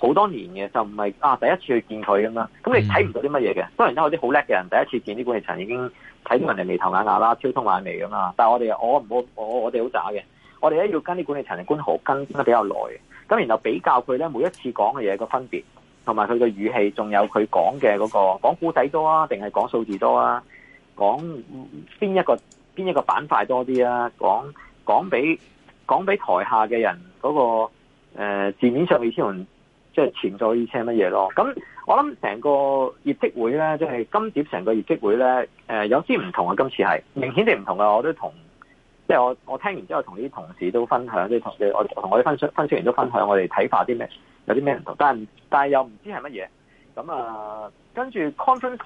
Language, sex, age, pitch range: Chinese, male, 30-49, 110-155 Hz